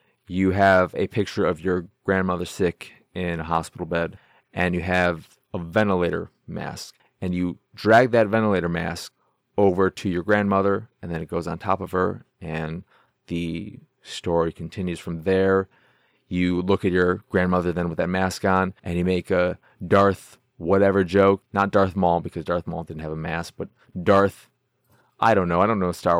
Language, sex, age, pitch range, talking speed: English, male, 30-49, 90-110 Hz, 180 wpm